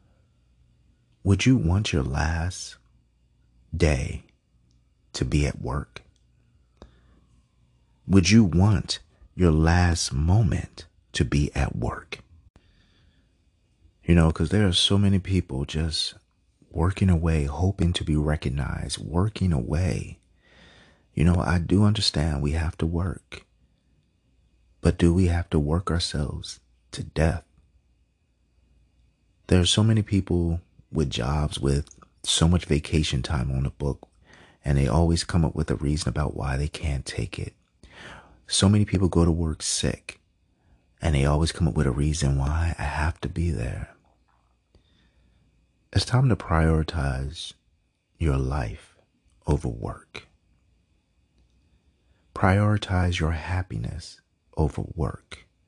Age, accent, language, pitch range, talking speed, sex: 40-59, American, English, 70-90 Hz, 125 wpm, male